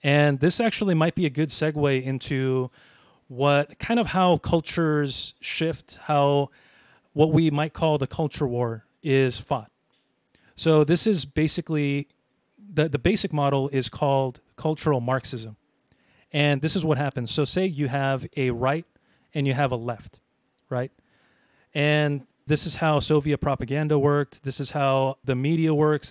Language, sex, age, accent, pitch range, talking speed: English, male, 30-49, American, 135-160 Hz, 155 wpm